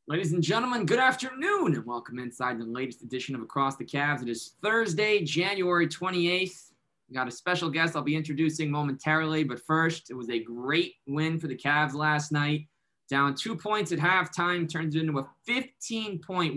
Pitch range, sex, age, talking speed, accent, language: 140-170 Hz, male, 20-39, 180 wpm, American, English